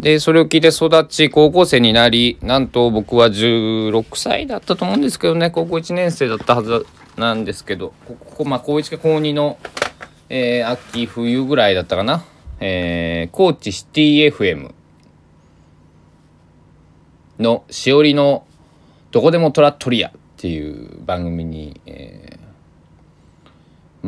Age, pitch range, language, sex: 20-39, 80-125 Hz, Japanese, male